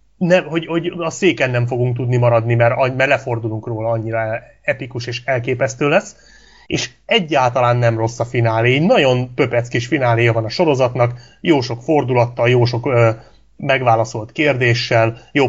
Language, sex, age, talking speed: Hungarian, male, 30-49, 160 wpm